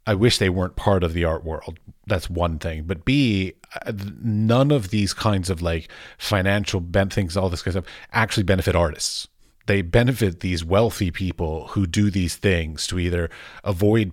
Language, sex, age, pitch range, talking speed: English, male, 30-49, 85-105 Hz, 180 wpm